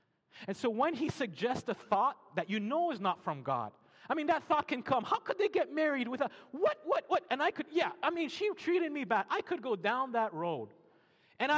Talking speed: 245 wpm